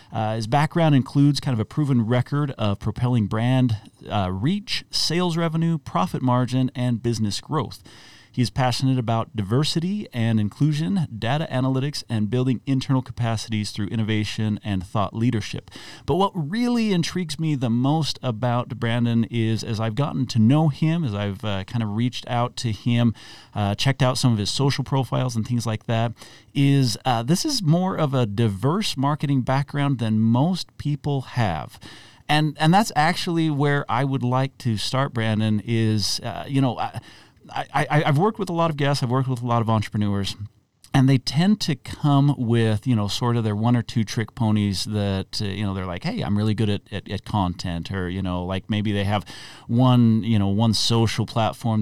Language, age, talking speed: English, 40-59, 190 wpm